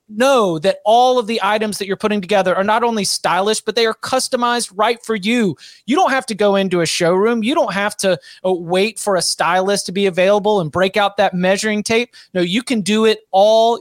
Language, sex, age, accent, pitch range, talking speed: English, male, 30-49, American, 195-235 Hz, 225 wpm